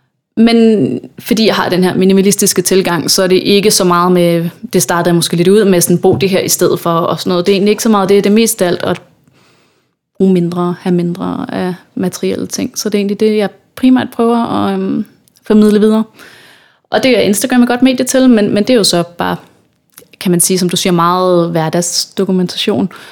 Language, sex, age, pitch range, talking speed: Danish, female, 30-49, 175-200 Hz, 220 wpm